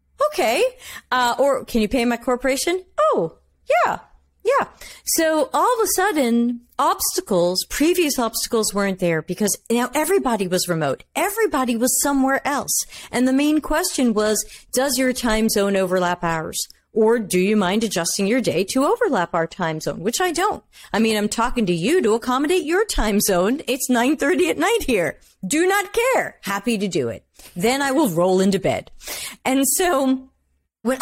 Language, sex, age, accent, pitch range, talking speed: English, female, 40-59, American, 185-270 Hz, 170 wpm